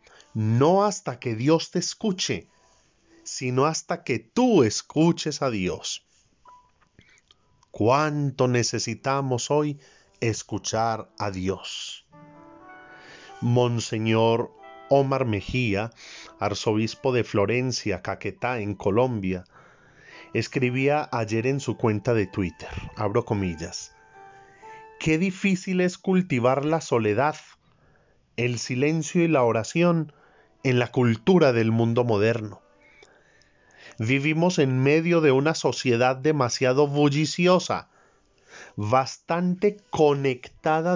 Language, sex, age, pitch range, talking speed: Spanish, male, 40-59, 115-155 Hz, 95 wpm